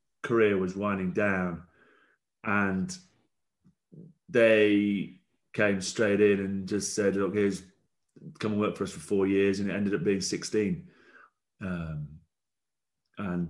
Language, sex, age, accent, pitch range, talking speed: English, male, 30-49, British, 95-110 Hz, 135 wpm